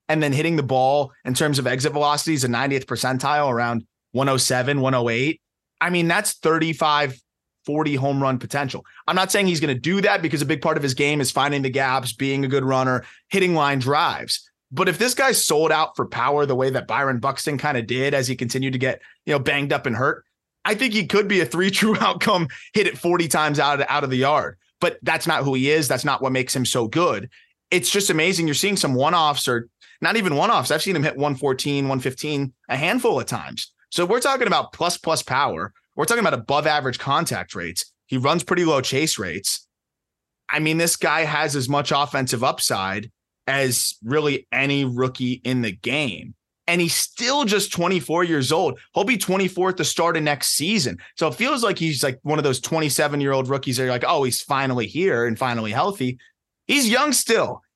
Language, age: English, 30-49